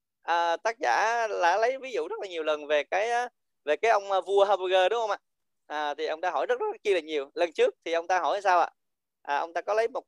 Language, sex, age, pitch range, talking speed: Vietnamese, male, 20-39, 165-235 Hz, 275 wpm